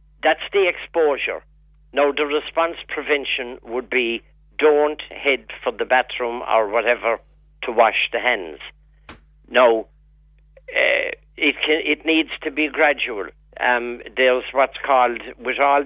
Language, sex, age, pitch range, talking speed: English, male, 50-69, 120-150 Hz, 130 wpm